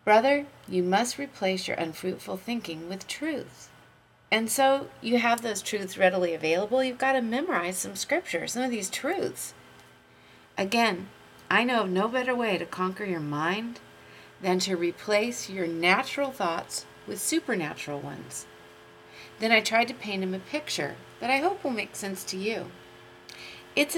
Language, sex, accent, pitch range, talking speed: English, female, American, 150-240 Hz, 160 wpm